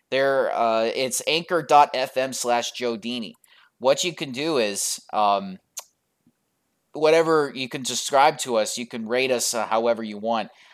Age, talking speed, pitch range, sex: 20-39, 145 wpm, 110-130 Hz, male